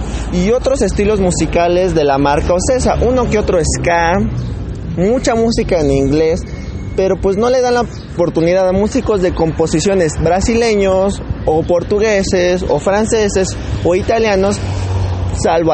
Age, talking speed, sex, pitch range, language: 20-39, 135 wpm, male, 160-205 Hz, English